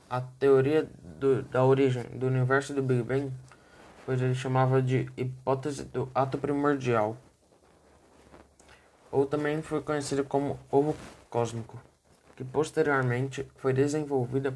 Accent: Brazilian